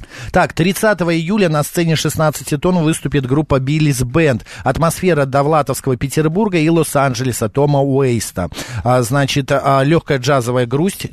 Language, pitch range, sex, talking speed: Russian, 130-170 Hz, male, 130 wpm